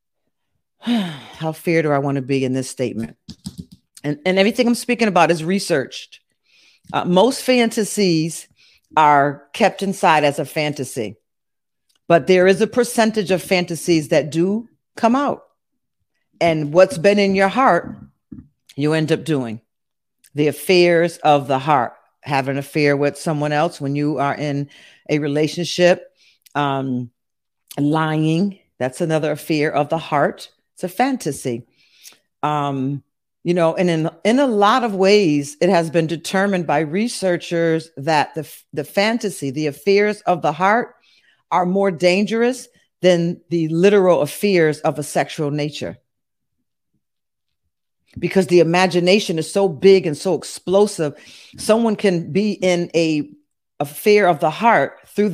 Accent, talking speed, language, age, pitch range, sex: American, 145 wpm, English, 40-59, 150-195 Hz, female